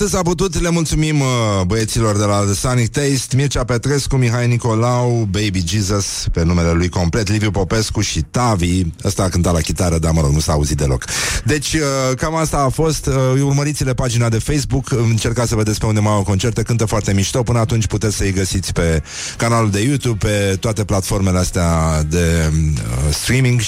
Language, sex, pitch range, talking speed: Romanian, male, 95-125 Hz, 175 wpm